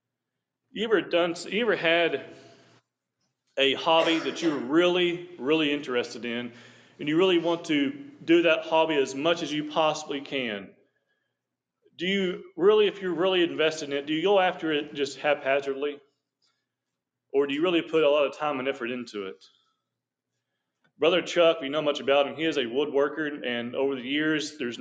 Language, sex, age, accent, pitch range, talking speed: English, male, 40-59, American, 145-185 Hz, 175 wpm